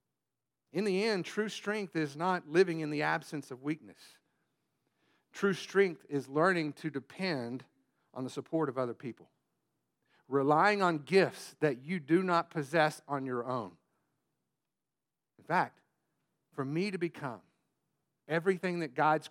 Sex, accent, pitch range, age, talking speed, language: male, American, 145-200 Hz, 50-69, 140 wpm, English